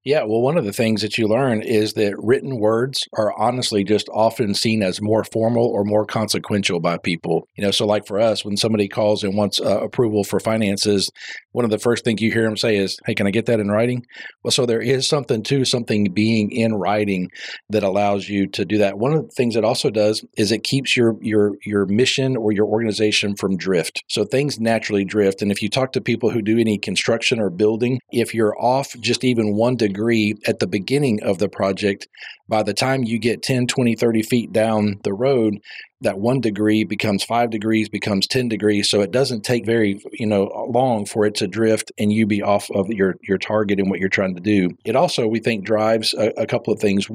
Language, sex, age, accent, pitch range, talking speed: English, male, 40-59, American, 105-115 Hz, 230 wpm